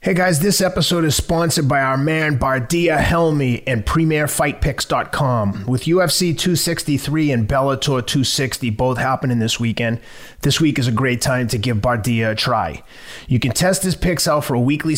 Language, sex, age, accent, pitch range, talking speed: English, male, 30-49, American, 120-155 Hz, 170 wpm